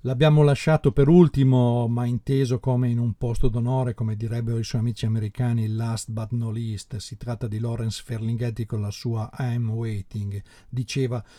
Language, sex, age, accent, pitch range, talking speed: Italian, male, 50-69, native, 115-130 Hz, 170 wpm